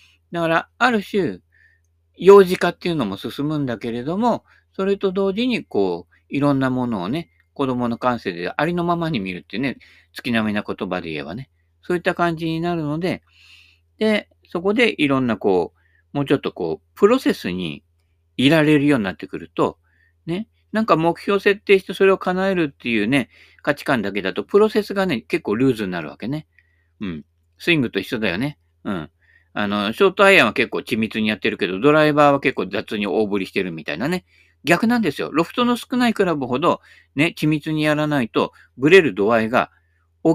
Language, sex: Japanese, male